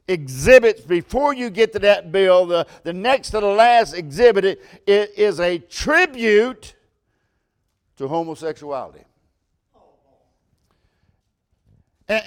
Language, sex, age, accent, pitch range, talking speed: English, male, 60-79, American, 165-230 Hz, 110 wpm